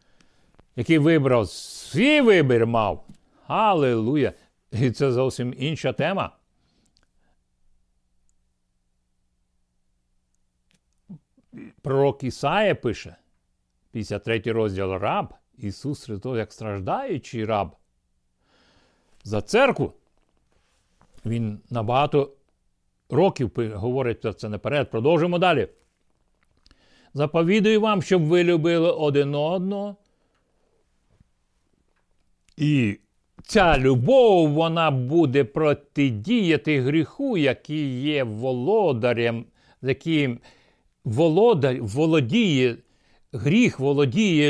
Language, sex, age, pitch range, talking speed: Ukrainian, male, 60-79, 115-165 Hz, 75 wpm